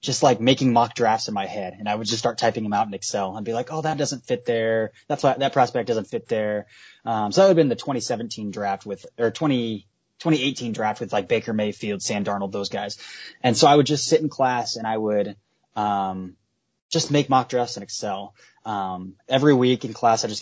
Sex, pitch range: male, 110-135 Hz